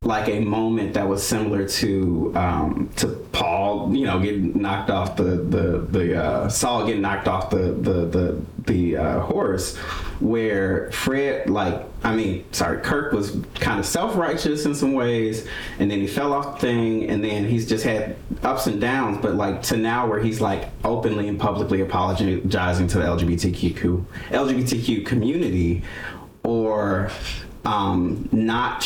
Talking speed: 160 wpm